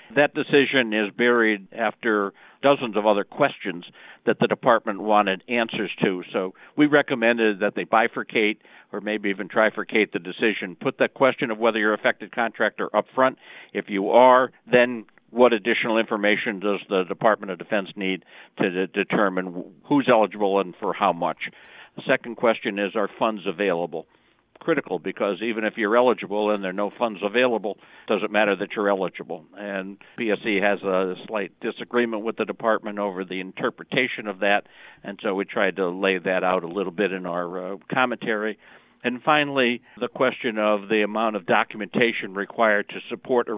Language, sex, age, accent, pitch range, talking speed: English, male, 60-79, American, 100-120 Hz, 170 wpm